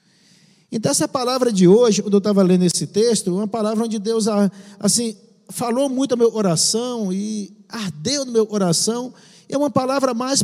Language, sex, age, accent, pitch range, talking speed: Portuguese, male, 50-69, Brazilian, 195-255 Hz, 170 wpm